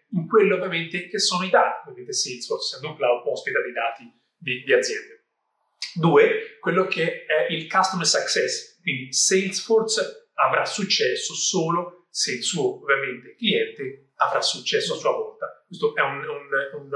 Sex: male